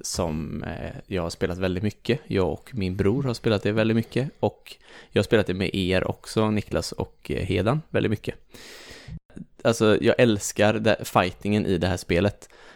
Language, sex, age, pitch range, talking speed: English, male, 20-39, 90-105 Hz, 170 wpm